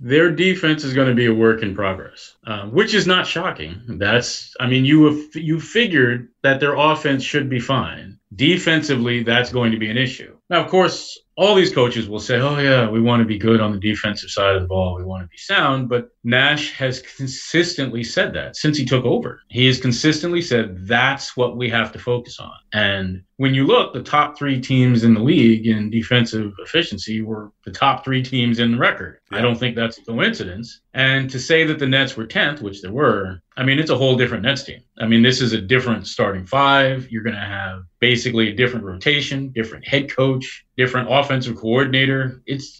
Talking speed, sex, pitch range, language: 215 wpm, male, 110-135 Hz, English